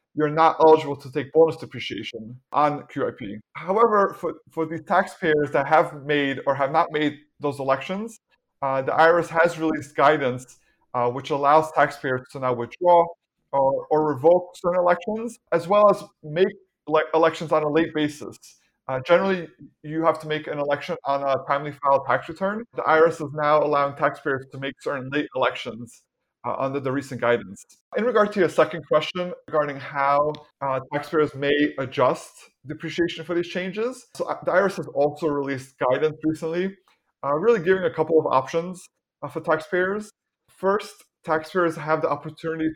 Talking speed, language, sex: 170 wpm, English, male